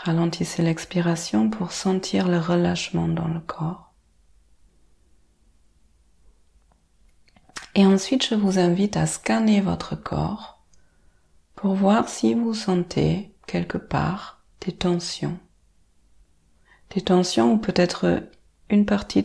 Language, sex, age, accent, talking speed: French, female, 30-49, French, 105 wpm